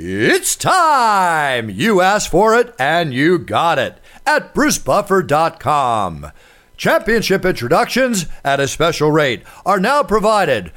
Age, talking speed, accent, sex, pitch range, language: 50-69, 115 wpm, American, male, 120-180 Hz, English